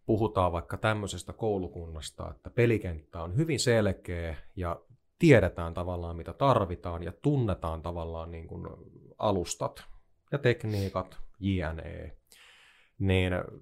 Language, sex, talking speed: Finnish, male, 100 wpm